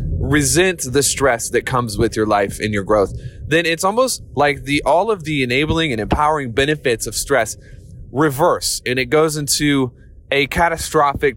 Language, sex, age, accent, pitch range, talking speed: English, male, 30-49, American, 110-145 Hz, 170 wpm